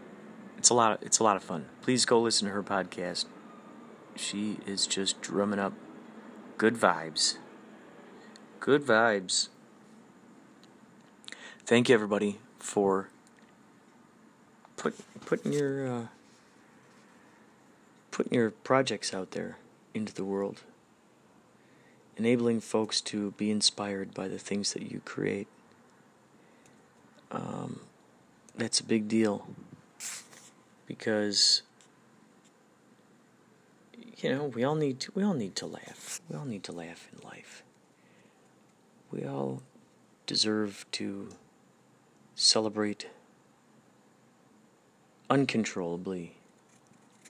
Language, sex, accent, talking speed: English, male, American, 105 wpm